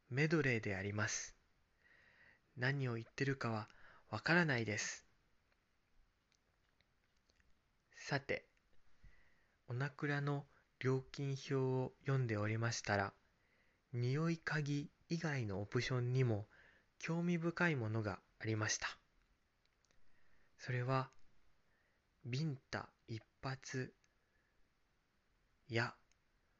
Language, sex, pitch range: Japanese, male, 105-140 Hz